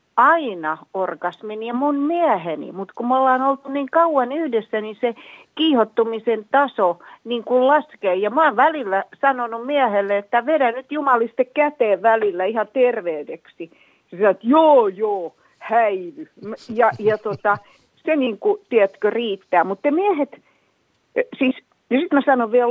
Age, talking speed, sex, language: 50-69, 145 wpm, female, Finnish